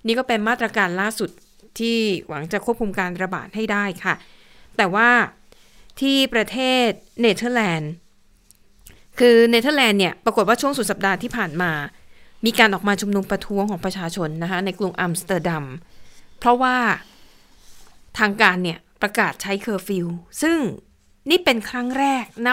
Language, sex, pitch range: Thai, female, 190-230 Hz